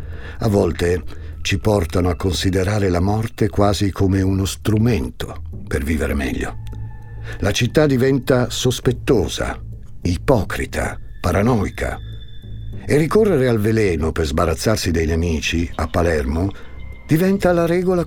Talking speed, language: 115 wpm, Italian